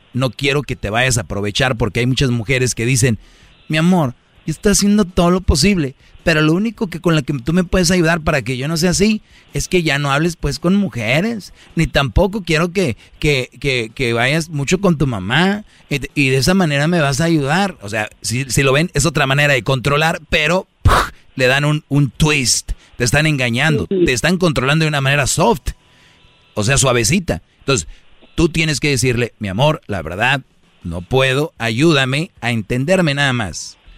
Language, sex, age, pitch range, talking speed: Spanish, male, 40-59, 120-155 Hz, 200 wpm